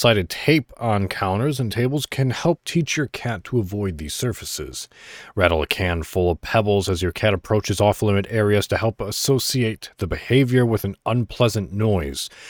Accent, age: American, 30-49